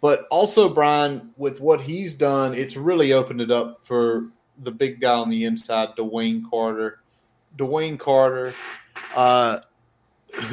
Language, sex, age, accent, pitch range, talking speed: English, male, 30-49, American, 115-140 Hz, 135 wpm